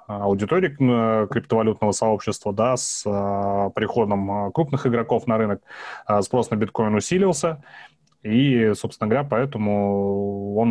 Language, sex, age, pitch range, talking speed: Russian, male, 20-39, 100-115 Hz, 105 wpm